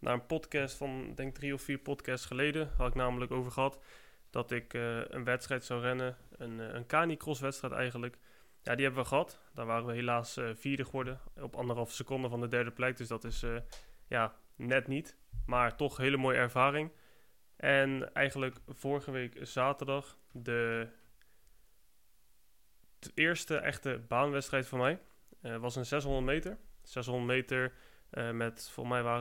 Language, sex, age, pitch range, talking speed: Dutch, male, 20-39, 120-135 Hz, 175 wpm